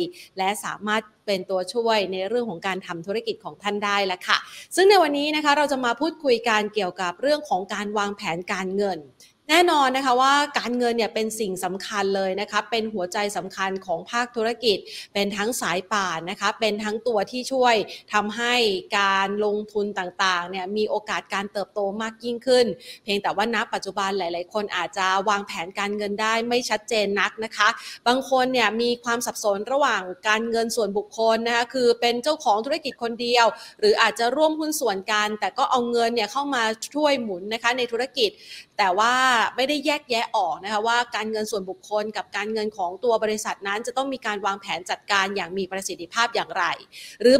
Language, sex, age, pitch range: Thai, female, 30-49, 200-255 Hz